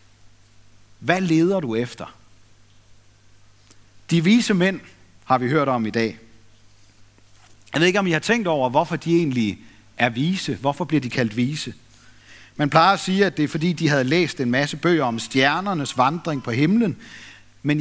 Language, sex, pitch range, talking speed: Danish, male, 105-170 Hz, 170 wpm